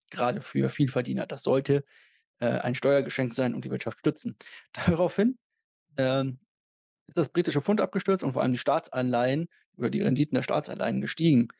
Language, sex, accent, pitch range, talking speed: German, male, German, 130-165 Hz, 160 wpm